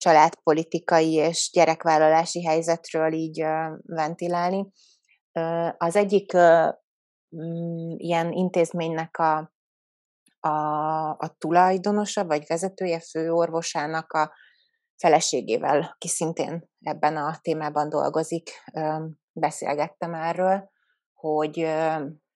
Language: Hungarian